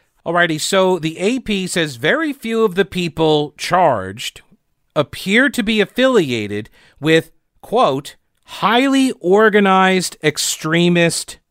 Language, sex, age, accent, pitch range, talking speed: English, male, 50-69, American, 145-205 Hz, 105 wpm